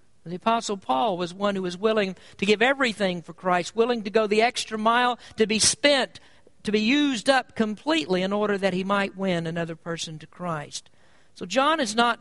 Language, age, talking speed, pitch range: English, 60-79, 200 wpm, 190-250 Hz